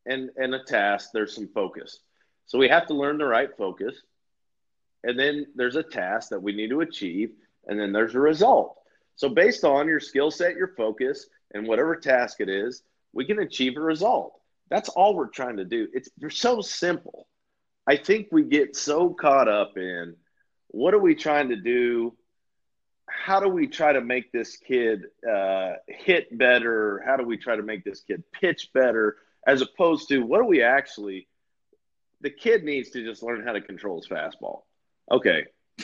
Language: English